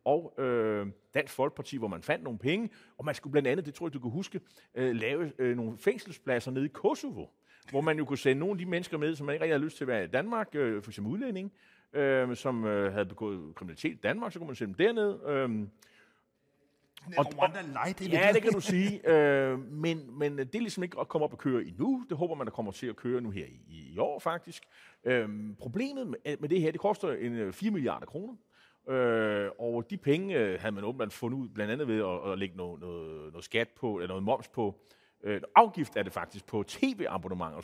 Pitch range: 115-190 Hz